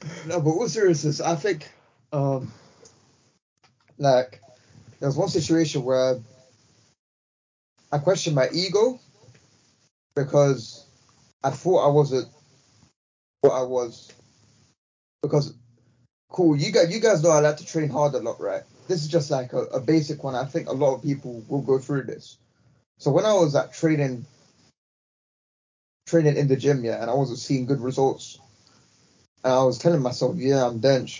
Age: 20-39